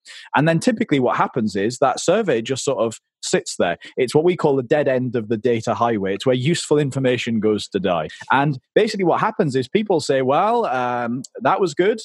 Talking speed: 215 wpm